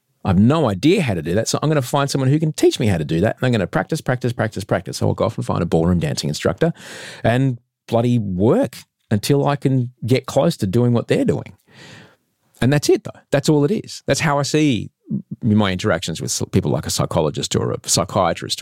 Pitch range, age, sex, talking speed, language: 90-130 Hz, 40-59, male, 240 wpm, English